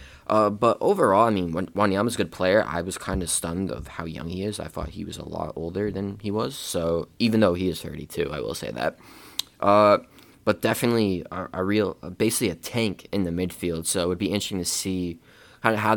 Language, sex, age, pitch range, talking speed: English, male, 20-39, 85-100 Hz, 230 wpm